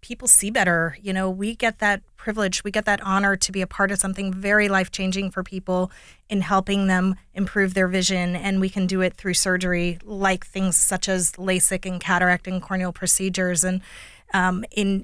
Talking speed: 195 wpm